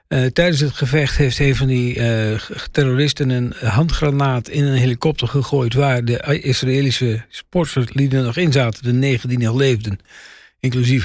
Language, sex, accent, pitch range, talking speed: Dutch, male, Dutch, 125-155 Hz, 165 wpm